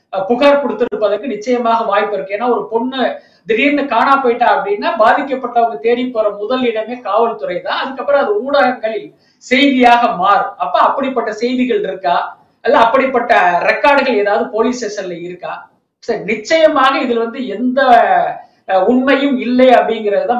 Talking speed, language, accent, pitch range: 95 wpm, Tamil, native, 210-255 Hz